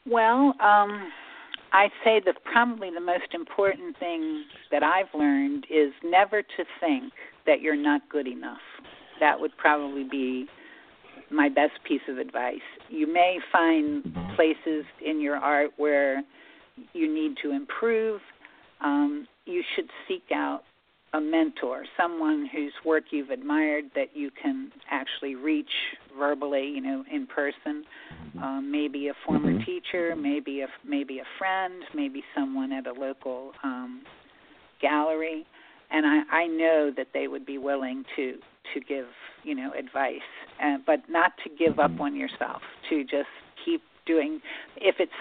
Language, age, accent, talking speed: English, 50-69, American, 145 wpm